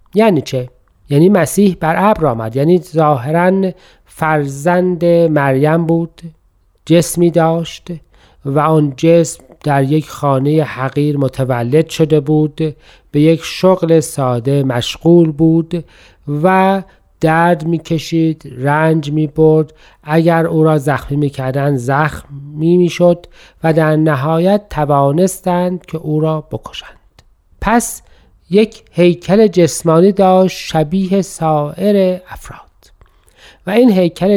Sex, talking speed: male, 110 wpm